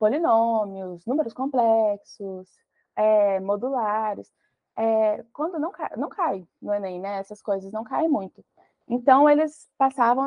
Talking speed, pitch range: 130 wpm, 205-245 Hz